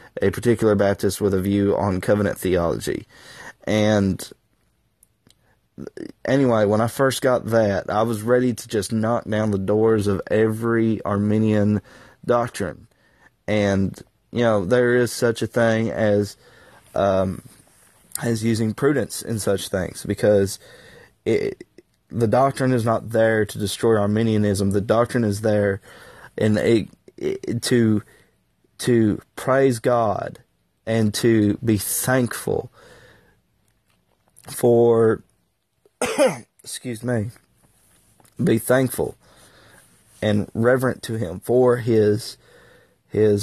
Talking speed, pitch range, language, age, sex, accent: 115 wpm, 105-120 Hz, English, 20-39, male, American